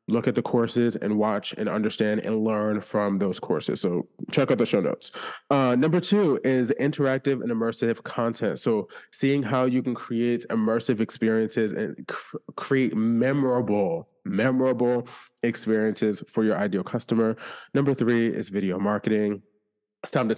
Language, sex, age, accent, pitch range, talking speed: English, male, 20-39, American, 110-140 Hz, 155 wpm